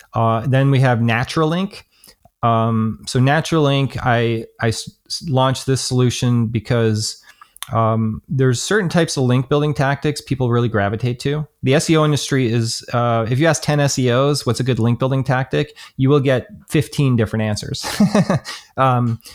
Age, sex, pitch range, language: 30-49, male, 115-135 Hz, English